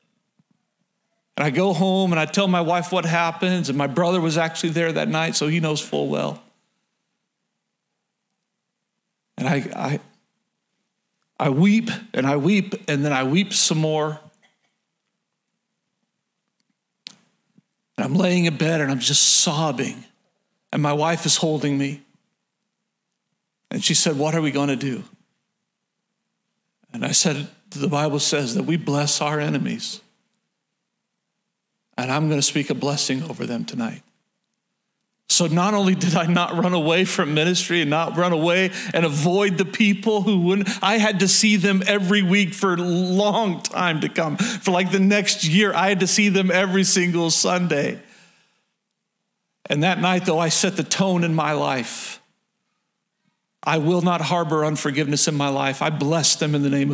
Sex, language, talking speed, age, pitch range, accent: male, English, 160 wpm, 40-59, 160-205 Hz, American